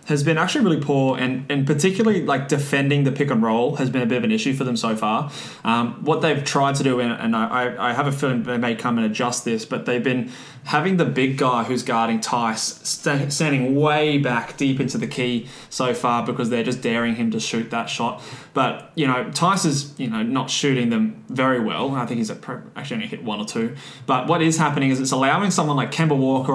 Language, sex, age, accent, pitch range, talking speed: English, male, 20-39, Australian, 125-145 Hz, 240 wpm